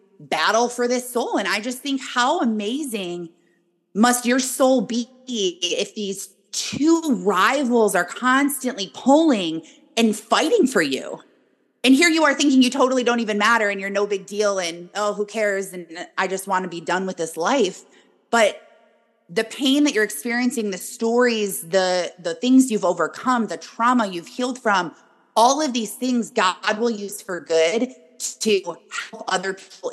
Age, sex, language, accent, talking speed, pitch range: 30-49, female, English, American, 170 wpm, 190-250 Hz